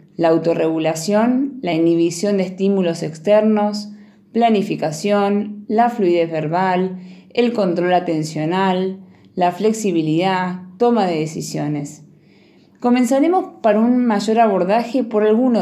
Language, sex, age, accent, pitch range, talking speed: Spanish, female, 20-39, Argentinian, 165-215 Hz, 100 wpm